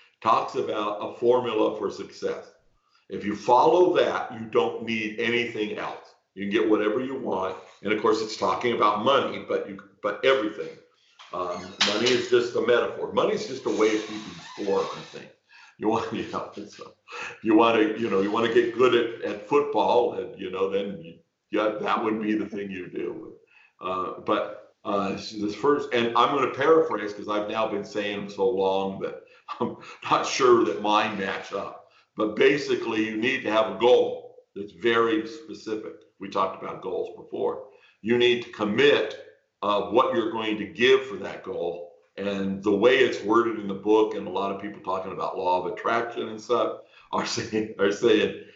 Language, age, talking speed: English, 50-69, 195 wpm